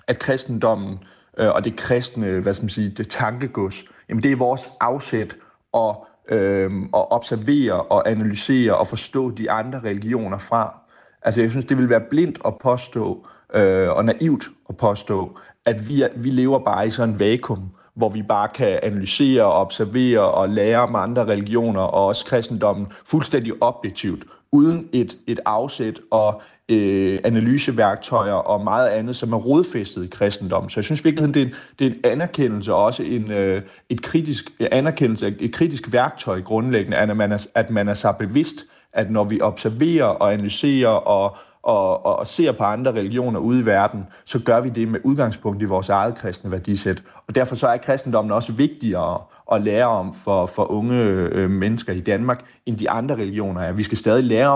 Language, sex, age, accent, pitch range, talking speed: Danish, male, 30-49, native, 105-125 Hz, 165 wpm